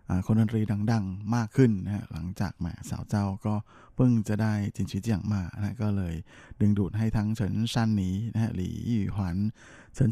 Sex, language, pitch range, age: male, Thai, 95-115 Hz, 20-39